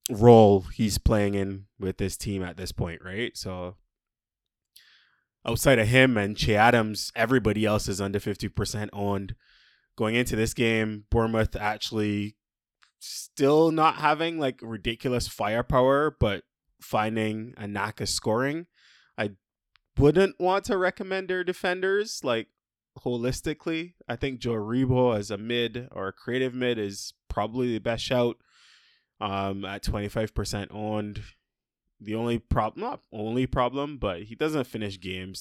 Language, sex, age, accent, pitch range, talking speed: English, male, 20-39, American, 100-125 Hz, 140 wpm